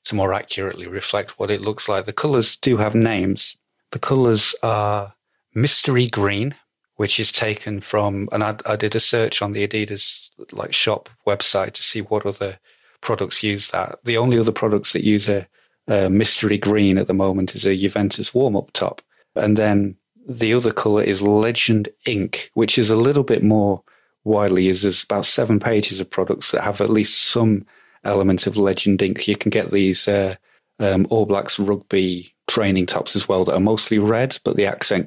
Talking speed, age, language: 190 wpm, 30-49, English